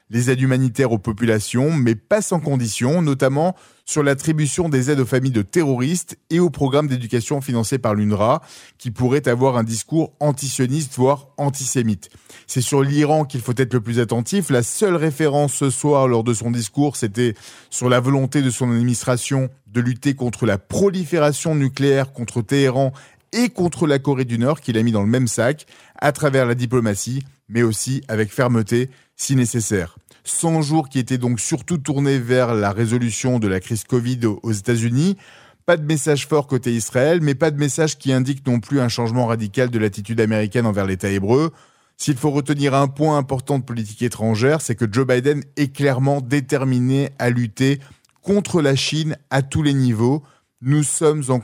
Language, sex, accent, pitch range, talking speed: Italian, male, French, 120-145 Hz, 185 wpm